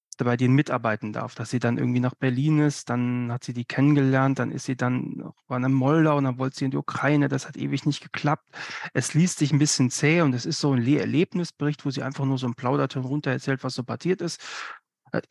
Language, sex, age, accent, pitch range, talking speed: German, male, 40-59, German, 130-150 Hz, 240 wpm